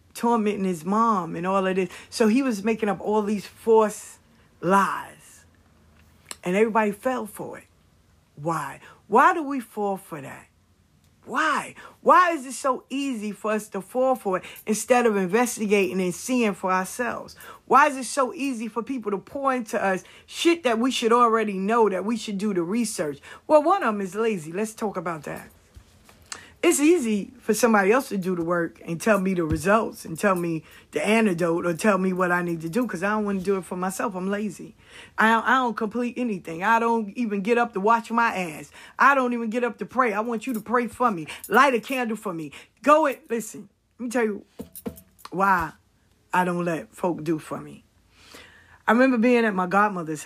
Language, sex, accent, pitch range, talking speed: English, female, American, 175-235 Hz, 205 wpm